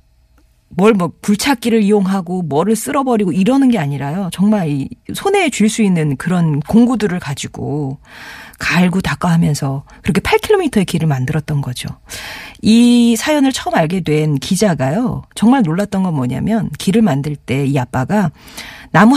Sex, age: female, 40-59